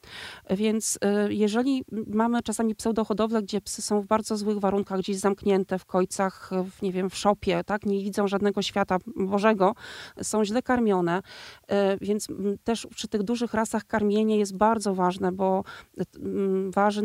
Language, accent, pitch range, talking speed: Polish, native, 190-220 Hz, 140 wpm